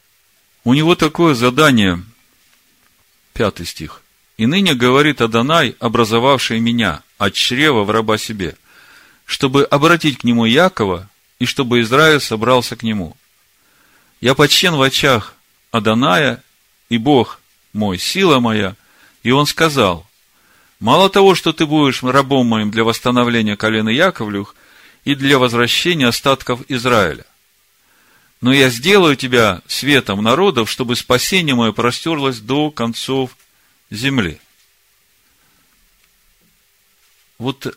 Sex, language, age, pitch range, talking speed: male, Russian, 50-69, 110-140 Hz, 115 wpm